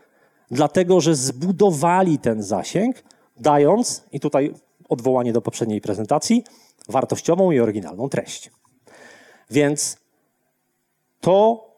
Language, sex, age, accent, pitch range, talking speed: Polish, male, 30-49, native, 130-185 Hz, 90 wpm